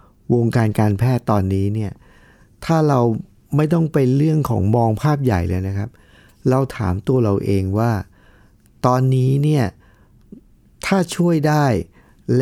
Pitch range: 100-130 Hz